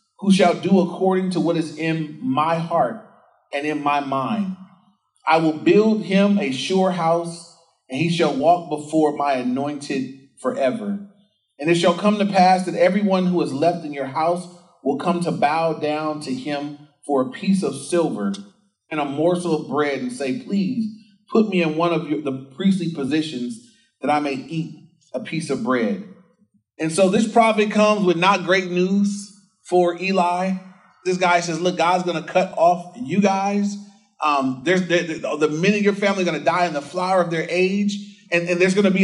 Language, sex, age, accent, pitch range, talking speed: English, male, 30-49, American, 165-205 Hz, 190 wpm